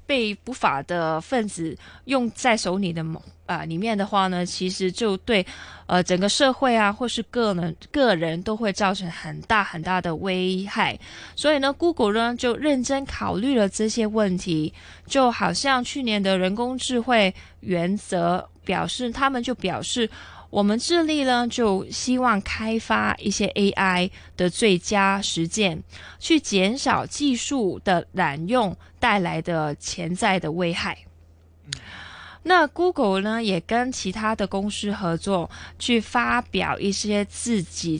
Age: 20-39